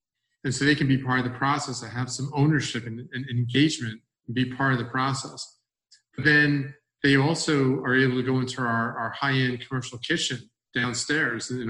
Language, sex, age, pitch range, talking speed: English, male, 40-59, 115-140 Hz, 195 wpm